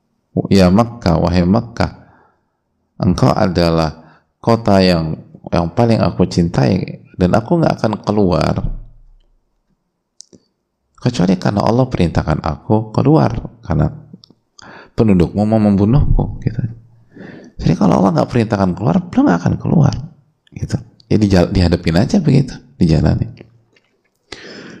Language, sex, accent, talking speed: Indonesian, male, native, 110 wpm